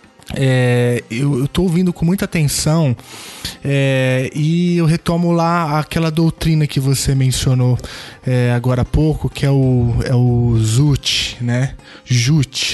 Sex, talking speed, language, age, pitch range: male, 135 wpm, Portuguese, 20-39, 130-175 Hz